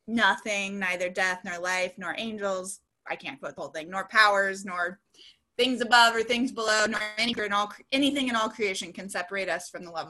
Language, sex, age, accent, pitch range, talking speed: English, female, 20-39, American, 180-220 Hz, 210 wpm